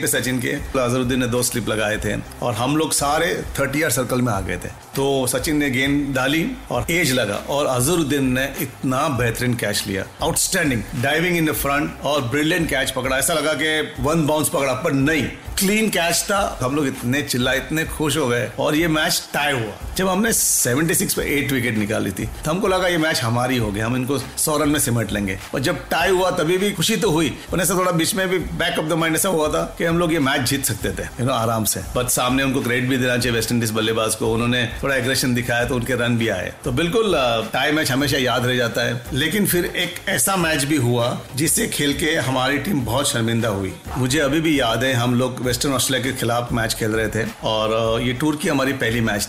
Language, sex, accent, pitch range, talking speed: Hindi, male, native, 120-155 Hz, 90 wpm